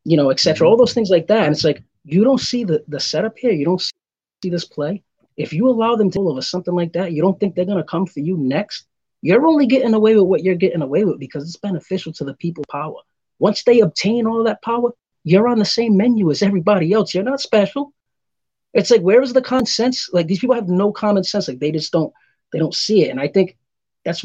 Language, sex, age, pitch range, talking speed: English, male, 30-49, 155-215 Hz, 250 wpm